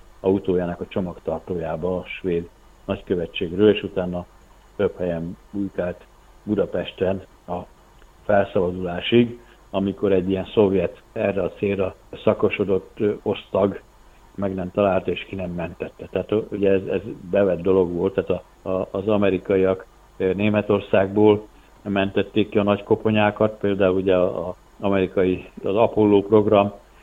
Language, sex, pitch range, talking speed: Hungarian, male, 90-105 Hz, 125 wpm